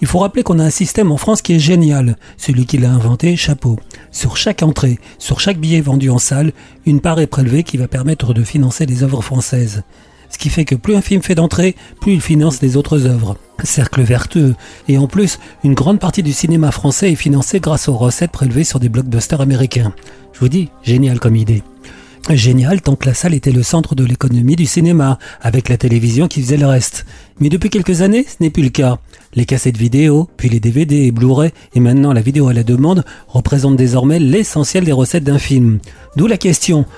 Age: 40-59